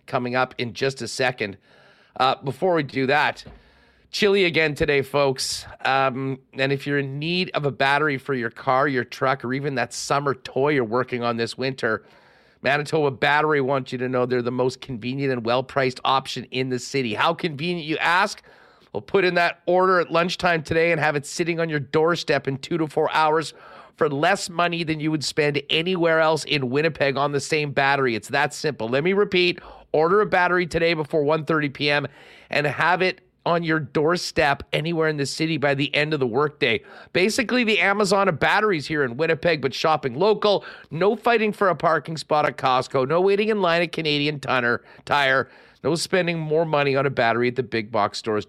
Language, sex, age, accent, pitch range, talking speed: English, male, 40-59, American, 130-170 Hz, 200 wpm